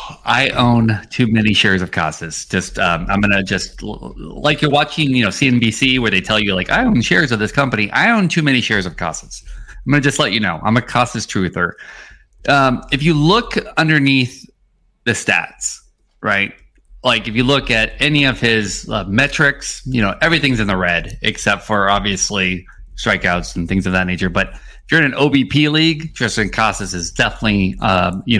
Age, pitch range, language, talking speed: 30-49, 100-135 Hz, English, 200 wpm